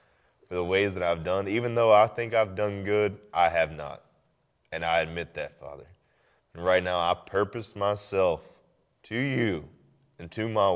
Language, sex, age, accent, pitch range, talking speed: English, male, 10-29, American, 85-100 Hz, 175 wpm